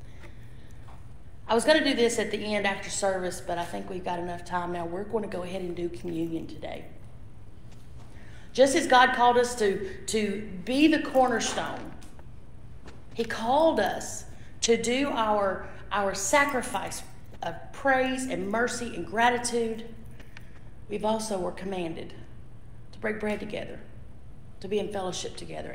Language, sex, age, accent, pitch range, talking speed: English, female, 40-59, American, 175-255 Hz, 150 wpm